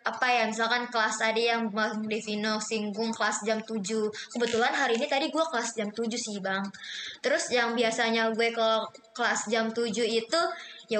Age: 20-39